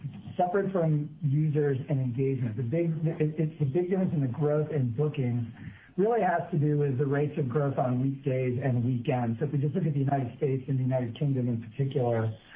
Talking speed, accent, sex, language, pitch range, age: 210 wpm, American, male, English, 130-150 Hz, 50-69